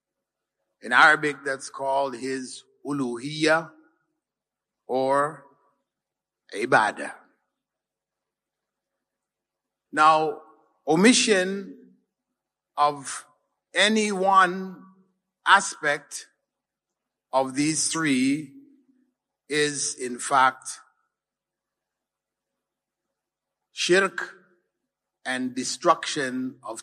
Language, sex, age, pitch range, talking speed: Malay, male, 50-69, 130-190 Hz, 55 wpm